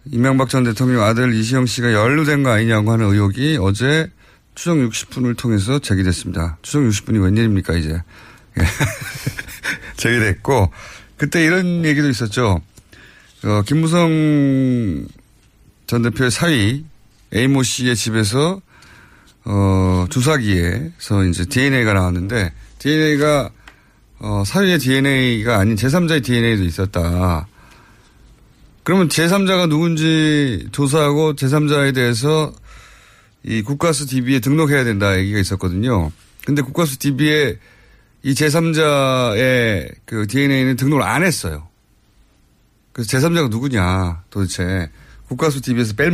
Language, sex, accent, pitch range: Korean, male, native, 105-145 Hz